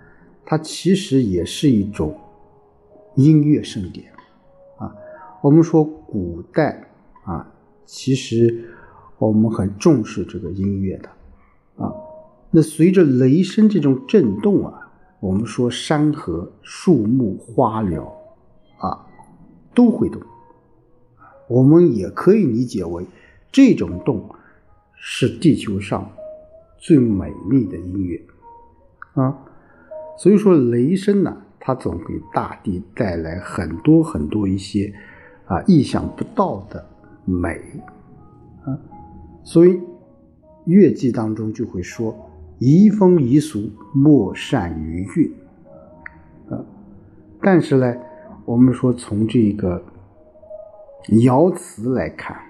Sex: male